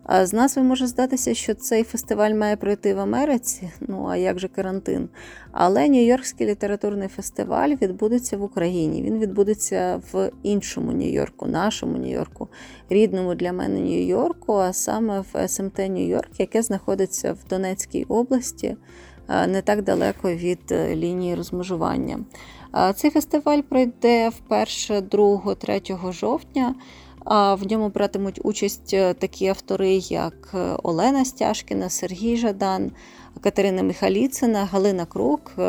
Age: 20-39